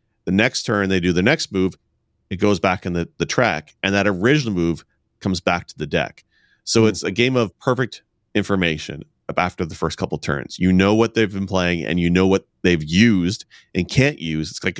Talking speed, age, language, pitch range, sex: 215 wpm, 30-49, English, 85-110 Hz, male